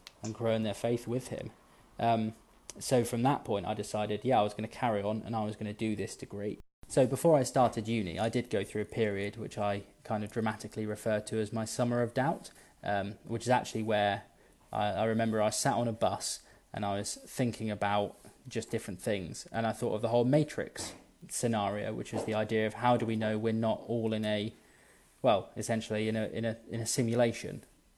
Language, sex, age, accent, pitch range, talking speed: English, male, 20-39, British, 110-125 Hz, 215 wpm